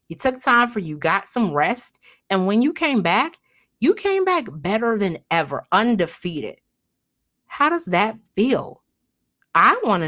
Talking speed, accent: 160 wpm, American